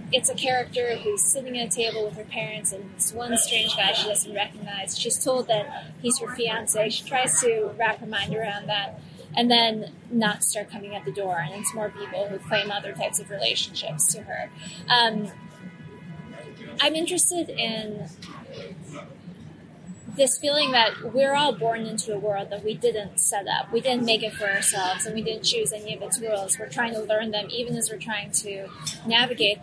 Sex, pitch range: female, 195-235 Hz